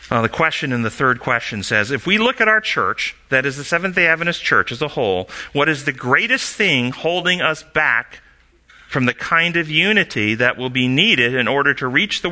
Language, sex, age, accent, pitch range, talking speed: English, male, 40-59, American, 120-160 Hz, 220 wpm